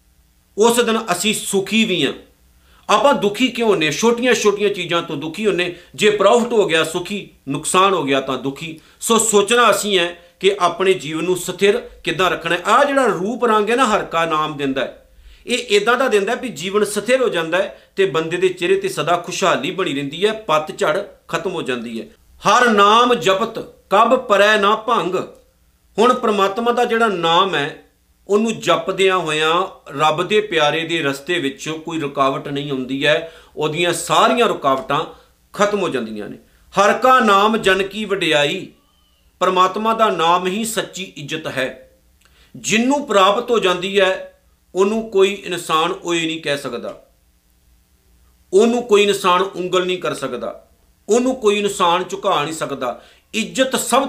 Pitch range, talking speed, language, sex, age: 155-215 Hz, 165 wpm, Punjabi, male, 50-69